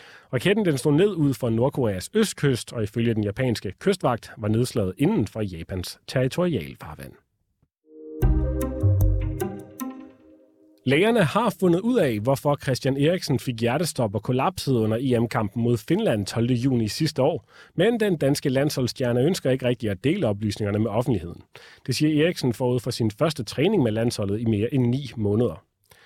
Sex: male